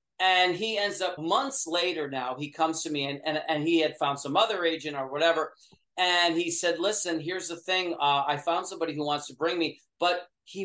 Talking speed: 225 wpm